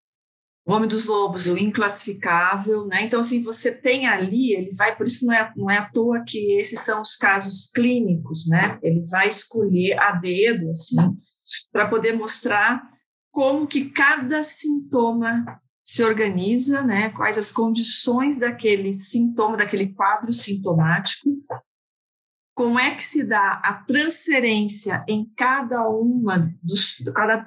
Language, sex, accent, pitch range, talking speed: Portuguese, female, Brazilian, 175-235 Hz, 145 wpm